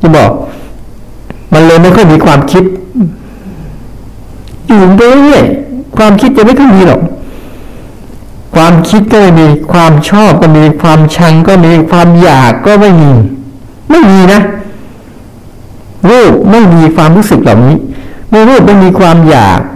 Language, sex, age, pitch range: Thai, male, 60-79, 135-205 Hz